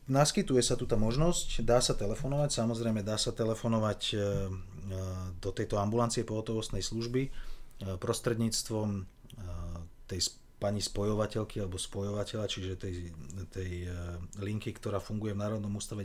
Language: Slovak